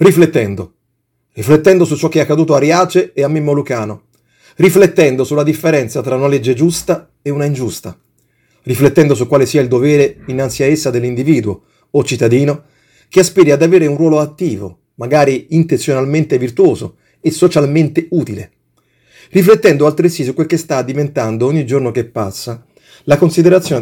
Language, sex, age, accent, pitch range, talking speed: Italian, male, 40-59, native, 125-165 Hz, 155 wpm